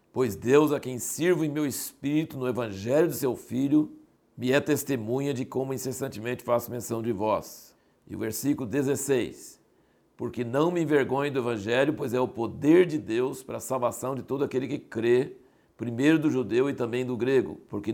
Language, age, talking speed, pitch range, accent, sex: Portuguese, 60-79, 185 wpm, 120-150 Hz, Brazilian, male